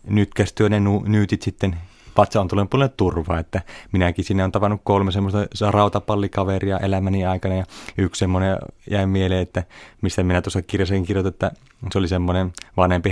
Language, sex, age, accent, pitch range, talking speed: Finnish, male, 30-49, native, 90-105 Hz, 170 wpm